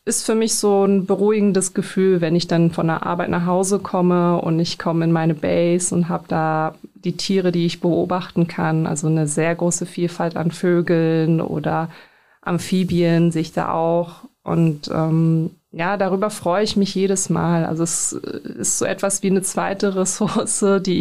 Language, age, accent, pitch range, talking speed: German, 30-49, German, 170-195 Hz, 180 wpm